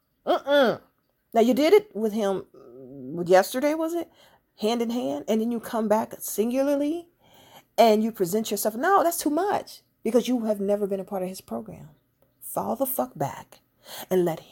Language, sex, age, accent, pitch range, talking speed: English, female, 40-59, American, 155-215 Hz, 180 wpm